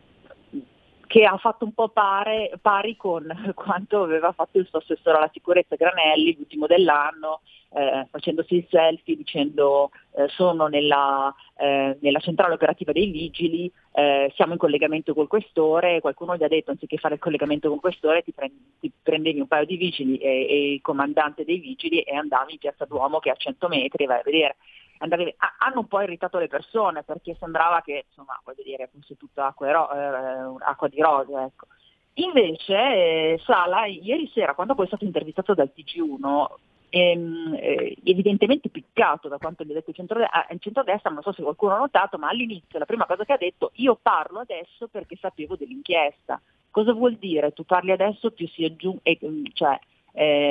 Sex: female